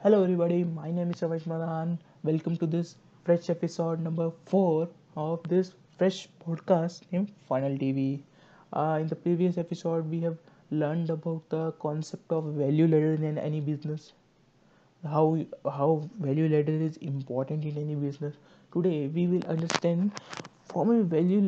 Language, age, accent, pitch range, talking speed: English, 20-39, Indian, 155-185 Hz, 150 wpm